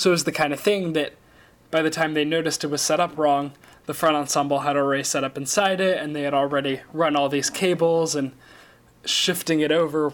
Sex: male